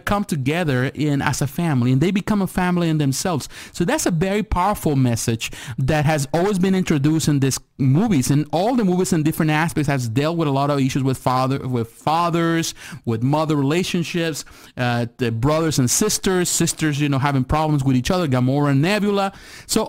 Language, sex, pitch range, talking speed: English, male, 130-165 Hz, 195 wpm